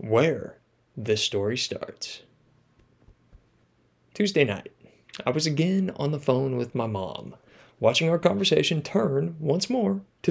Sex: male